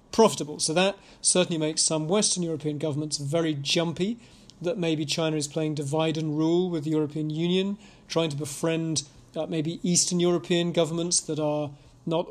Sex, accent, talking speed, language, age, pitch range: male, British, 165 wpm, English, 40-59, 155-180 Hz